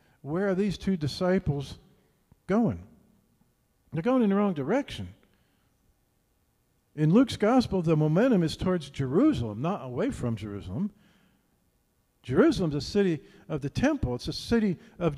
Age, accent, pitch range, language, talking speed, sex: 50-69, American, 125-195 Hz, English, 140 wpm, male